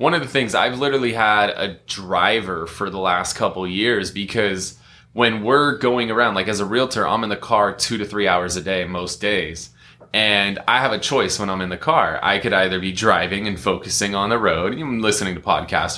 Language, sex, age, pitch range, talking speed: English, male, 20-39, 95-110 Hz, 220 wpm